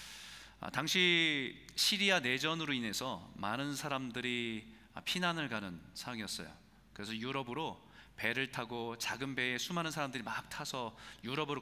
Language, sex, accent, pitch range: Korean, male, native, 110-160 Hz